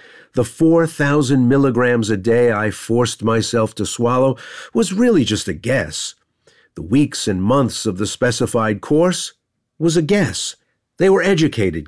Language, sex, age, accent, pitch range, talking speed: English, male, 50-69, American, 115-160 Hz, 145 wpm